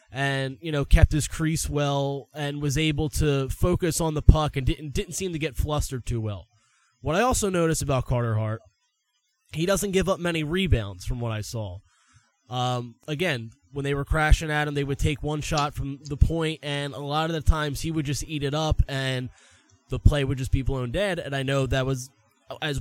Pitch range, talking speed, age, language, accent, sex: 125-155 Hz, 220 wpm, 20-39, English, American, male